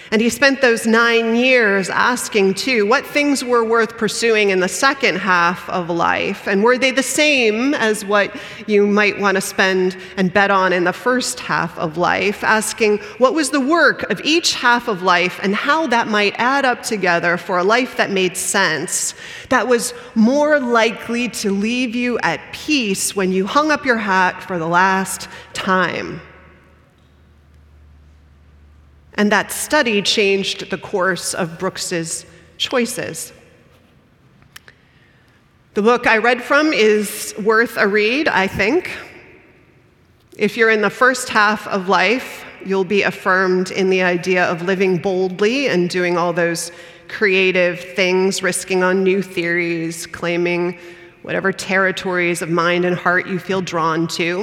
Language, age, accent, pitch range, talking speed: English, 30-49, American, 180-230 Hz, 155 wpm